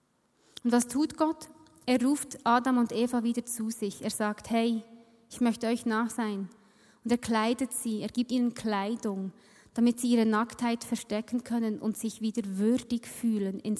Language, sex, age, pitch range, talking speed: German, female, 20-39, 220-255 Hz, 170 wpm